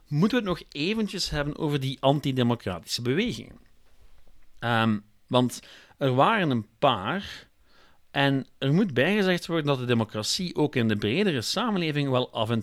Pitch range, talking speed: 110-155 Hz, 145 wpm